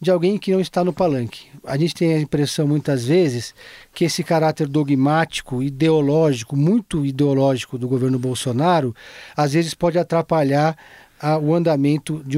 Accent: Brazilian